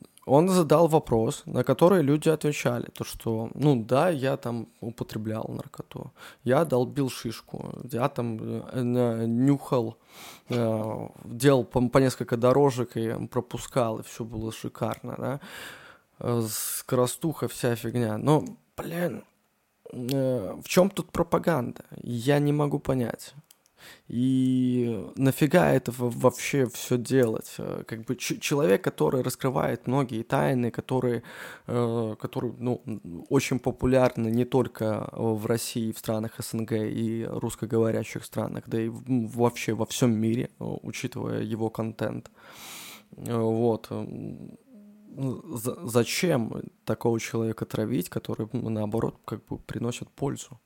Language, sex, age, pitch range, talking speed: Russian, male, 20-39, 115-135 Hz, 115 wpm